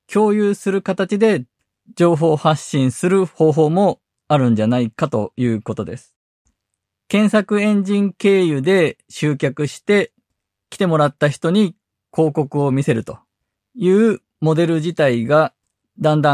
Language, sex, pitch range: Japanese, male, 125-175 Hz